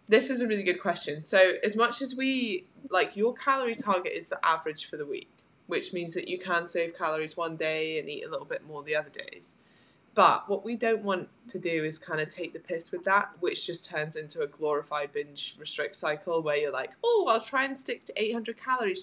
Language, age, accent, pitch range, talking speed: English, 20-39, British, 155-215 Hz, 235 wpm